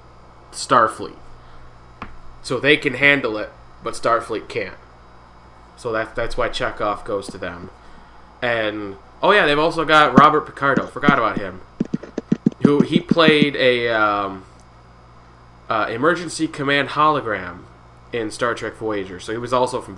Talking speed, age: 140 wpm, 20-39